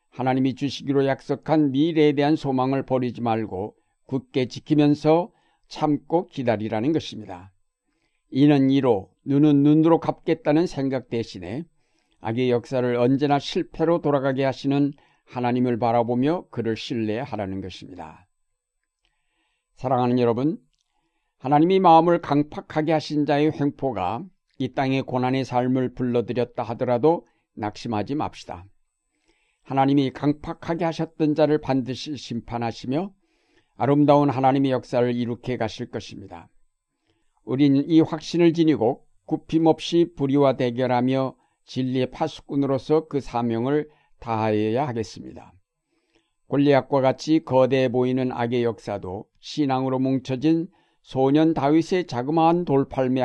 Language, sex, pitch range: Korean, male, 120-150 Hz